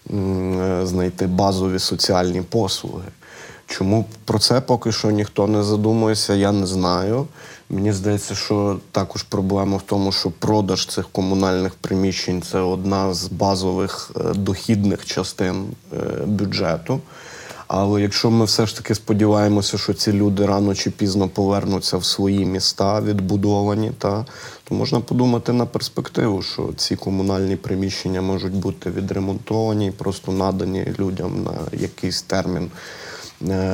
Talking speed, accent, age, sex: 130 wpm, native, 20-39, male